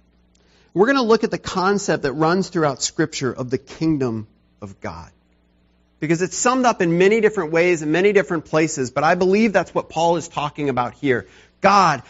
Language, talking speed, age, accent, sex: English, 195 wpm, 40-59, American, male